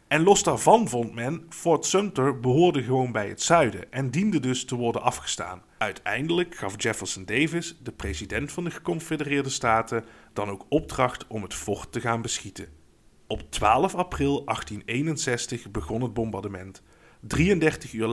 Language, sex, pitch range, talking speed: Dutch, male, 110-150 Hz, 150 wpm